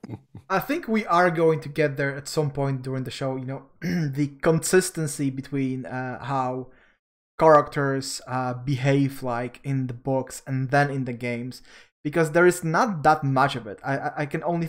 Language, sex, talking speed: English, male, 185 wpm